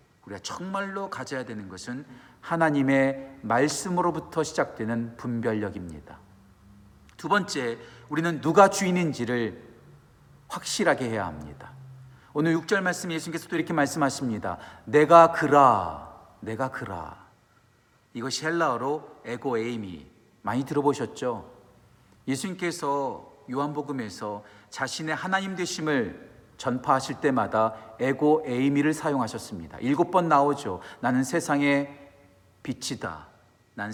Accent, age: native, 40-59